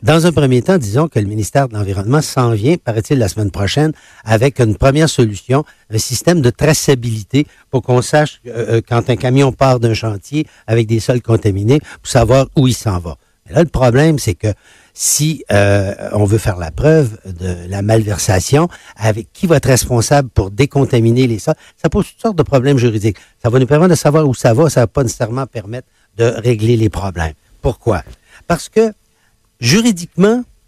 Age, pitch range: 60-79, 110-145 Hz